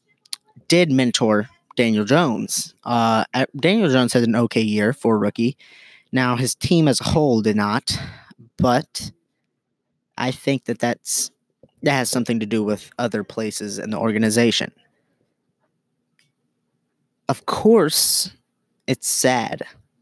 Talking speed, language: 125 wpm, English